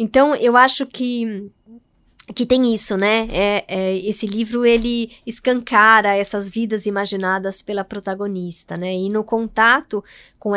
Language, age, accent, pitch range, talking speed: Portuguese, 20-39, Brazilian, 200-250 Hz, 125 wpm